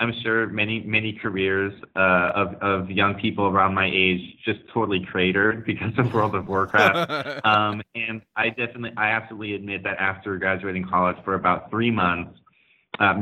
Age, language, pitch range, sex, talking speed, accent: 30-49, English, 95-115 Hz, male, 170 wpm, American